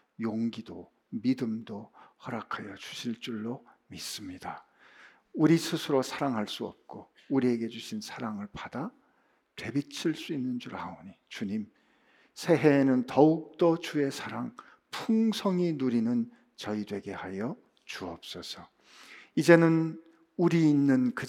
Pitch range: 130-175 Hz